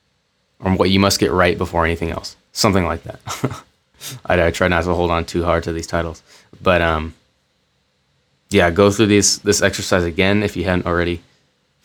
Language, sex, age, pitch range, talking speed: English, male, 20-39, 80-95 Hz, 190 wpm